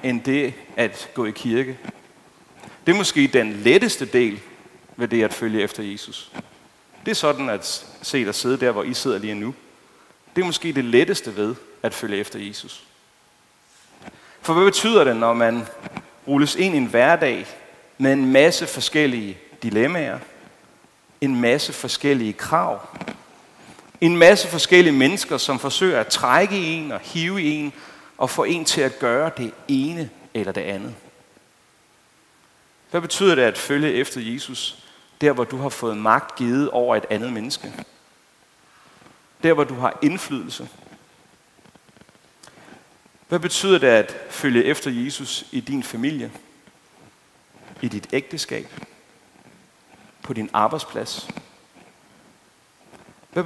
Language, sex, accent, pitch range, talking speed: Danish, male, native, 120-170 Hz, 140 wpm